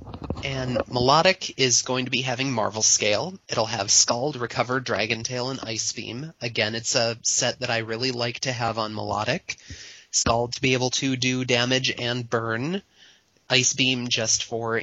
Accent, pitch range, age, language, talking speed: American, 115-130 Hz, 30-49, English, 175 wpm